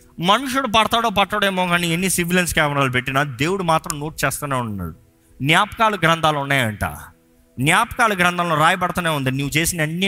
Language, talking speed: Telugu, 145 wpm